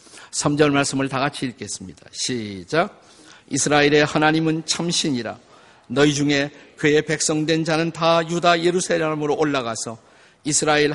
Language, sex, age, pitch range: Korean, male, 50-69, 140-170 Hz